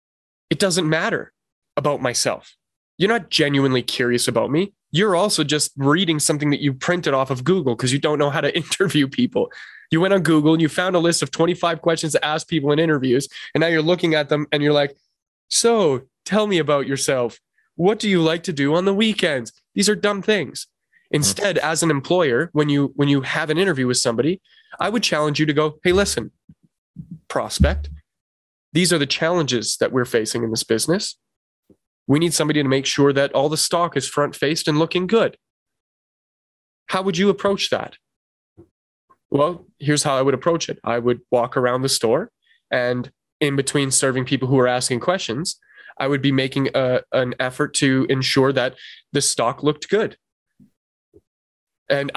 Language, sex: English, male